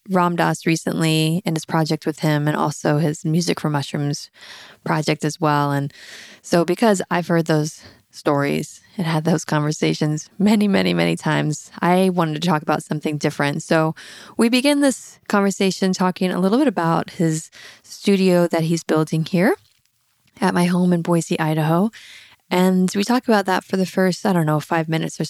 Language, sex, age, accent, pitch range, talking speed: English, female, 20-39, American, 165-195 Hz, 175 wpm